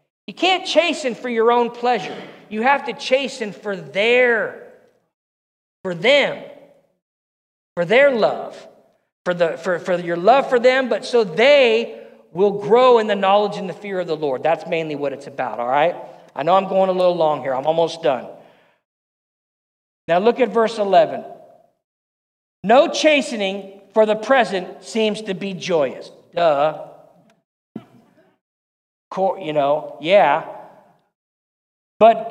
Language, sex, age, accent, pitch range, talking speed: English, male, 50-69, American, 185-265 Hz, 145 wpm